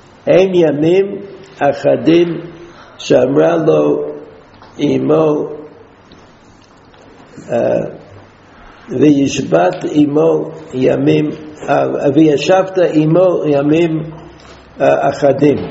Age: 60-79